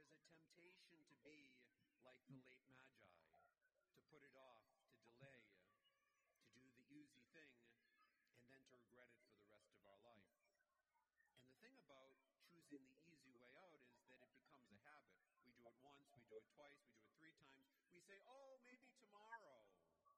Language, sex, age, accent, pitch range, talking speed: English, male, 50-69, American, 120-170 Hz, 180 wpm